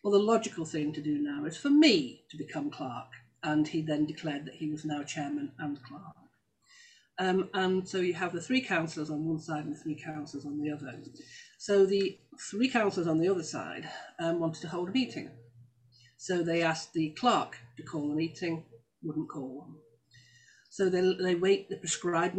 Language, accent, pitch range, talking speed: English, British, 150-190 Hz, 200 wpm